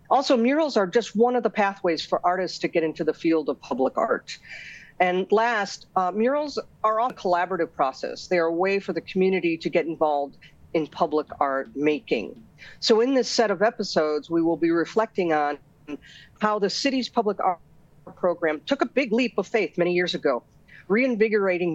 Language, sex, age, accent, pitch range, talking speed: English, female, 50-69, American, 160-220 Hz, 185 wpm